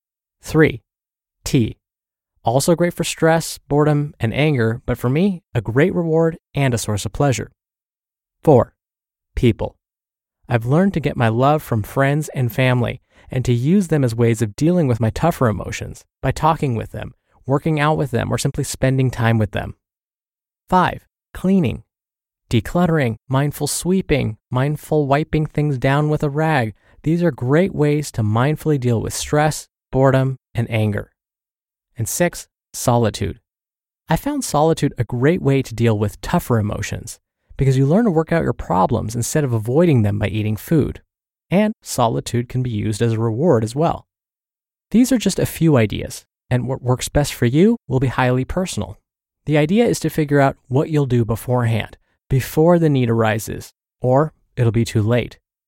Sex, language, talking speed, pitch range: male, English, 170 wpm, 115-155 Hz